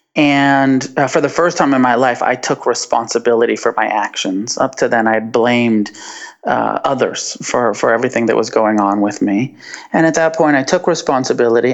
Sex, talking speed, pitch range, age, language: male, 195 wpm, 110-130 Hz, 30-49, English